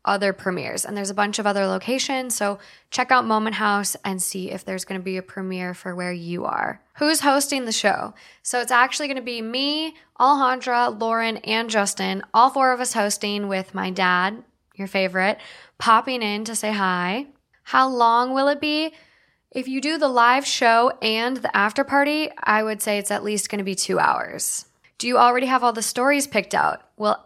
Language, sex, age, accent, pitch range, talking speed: English, female, 10-29, American, 195-250 Hz, 205 wpm